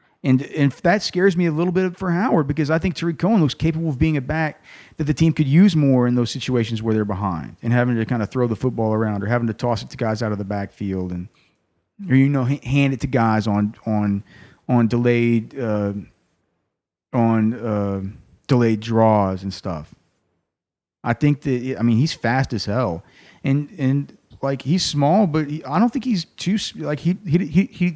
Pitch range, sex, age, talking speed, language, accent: 110-150 Hz, male, 30-49, 210 wpm, English, American